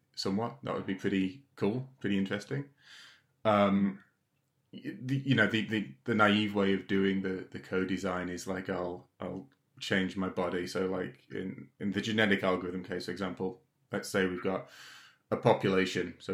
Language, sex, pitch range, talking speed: English, male, 90-115 Hz, 175 wpm